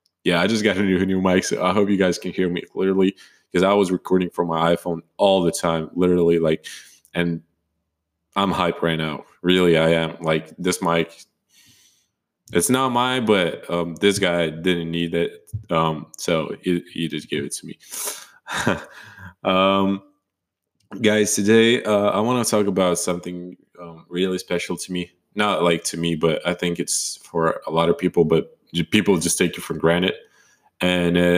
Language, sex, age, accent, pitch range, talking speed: English, male, 20-39, American, 85-100 Hz, 185 wpm